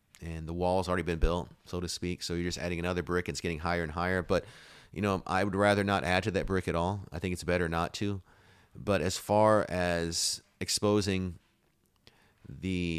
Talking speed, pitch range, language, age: 210 wpm, 85-95 Hz, English, 30-49